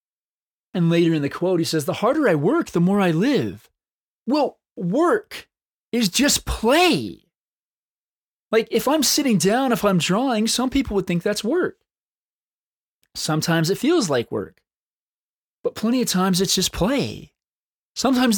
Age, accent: 20-39, American